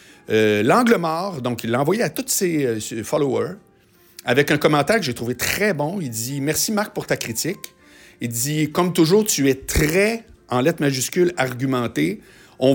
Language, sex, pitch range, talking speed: French, male, 115-165 Hz, 185 wpm